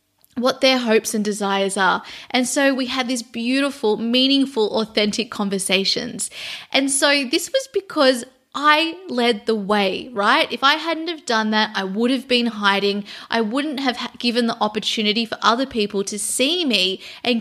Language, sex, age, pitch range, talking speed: English, female, 20-39, 205-265 Hz, 170 wpm